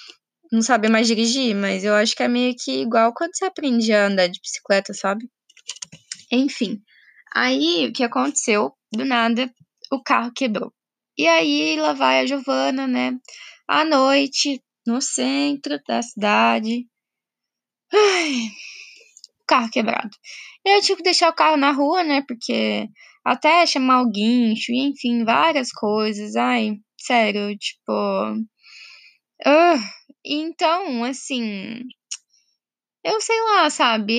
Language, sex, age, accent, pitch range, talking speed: Portuguese, female, 10-29, Brazilian, 215-285 Hz, 130 wpm